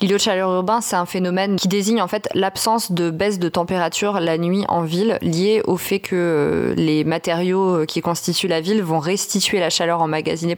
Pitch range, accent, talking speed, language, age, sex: 165-195 Hz, French, 200 wpm, French, 20-39, female